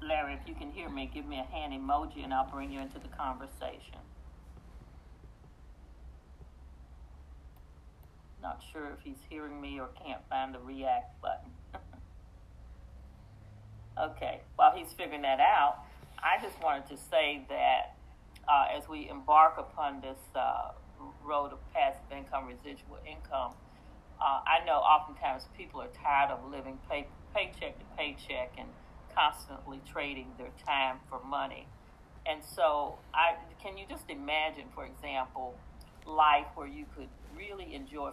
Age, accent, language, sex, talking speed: 40-59, American, English, female, 140 wpm